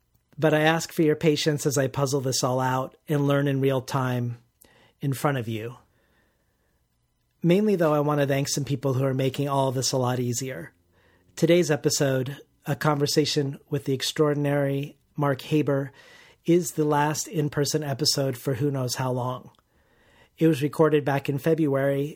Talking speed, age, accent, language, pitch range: 170 wpm, 40-59, American, English, 130-150 Hz